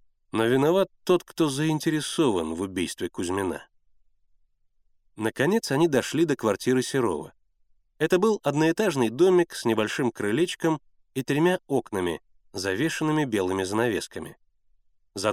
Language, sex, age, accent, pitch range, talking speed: Russian, male, 30-49, native, 105-155 Hz, 110 wpm